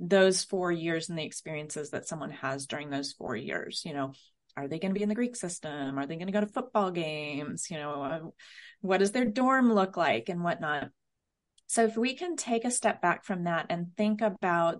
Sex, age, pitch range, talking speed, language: female, 30-49, 165-210 Hz, 225 wpm, English